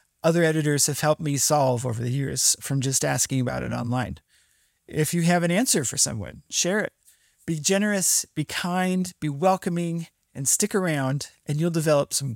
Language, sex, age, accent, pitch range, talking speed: English, male, 30-49, American, 140-170 Hz, 180 wpm